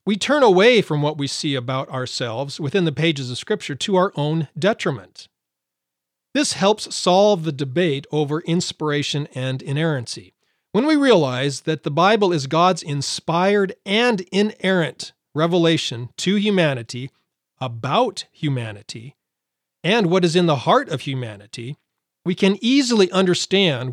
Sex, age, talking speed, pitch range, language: male, 40-59, 140 wpm, 130-185 Hz, English